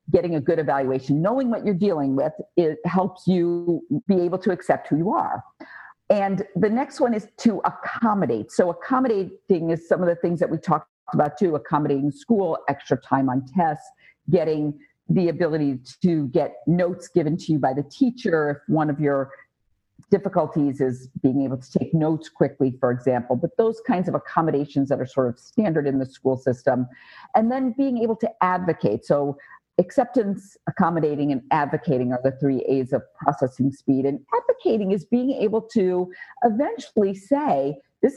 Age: 50-69